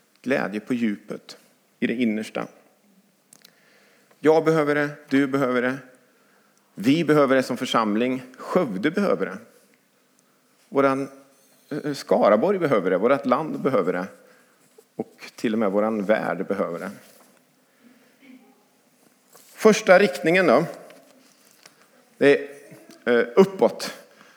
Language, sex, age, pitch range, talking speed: English, male, 50-69, 125-200 Hz, 105 wpm